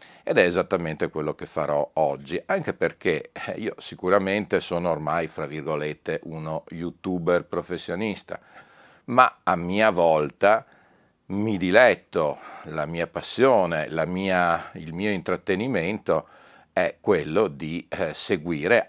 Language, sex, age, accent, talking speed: Italian, male, 50-69, native, 110 wpm